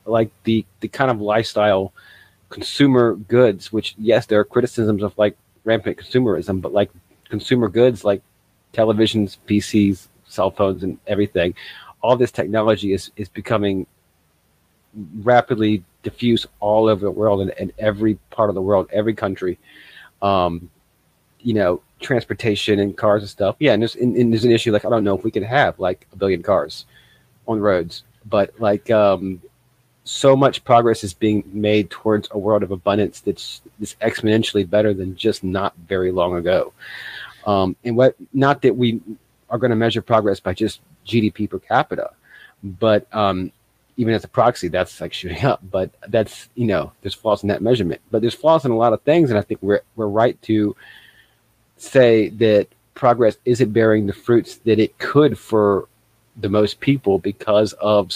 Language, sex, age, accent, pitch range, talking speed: English, male, 30-49, American, 100-115 Hz, 175 wpm